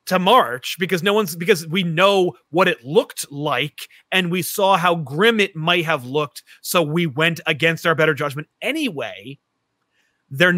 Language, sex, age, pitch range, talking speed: English, male, 30-49, 155-185 Hz, 170 wpm